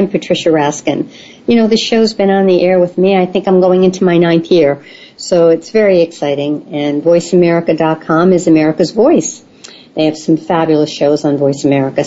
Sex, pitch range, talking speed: female, 165-235 Hz, 185 wpm